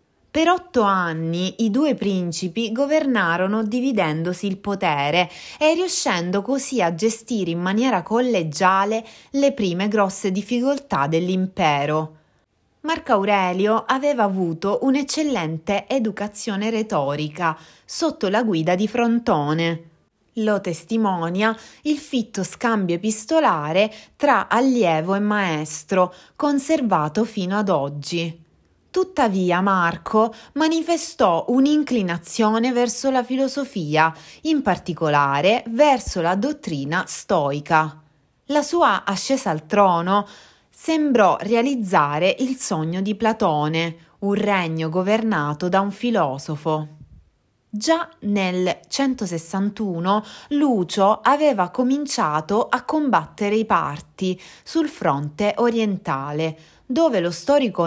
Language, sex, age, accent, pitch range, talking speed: Italian, female, 30-49, native, 170-245 Hz, 100 wpm